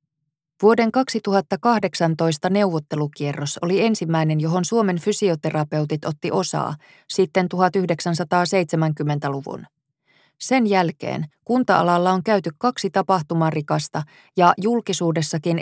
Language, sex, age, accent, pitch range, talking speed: Finnish, female, 20-39, native, 160-195 Hz, 80 wpm